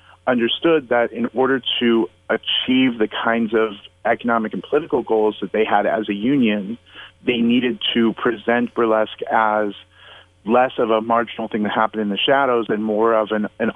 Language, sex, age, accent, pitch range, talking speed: English, male, 30-49, American, 105-115 Hz, 175 wpm